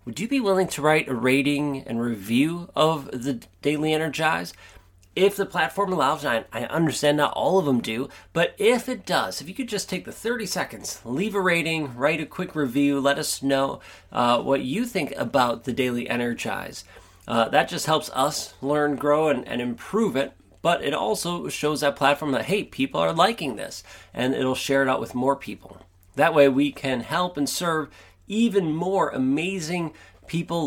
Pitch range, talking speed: 120-165 Hz, 190 wpm